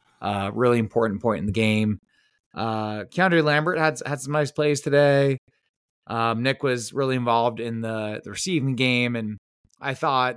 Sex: male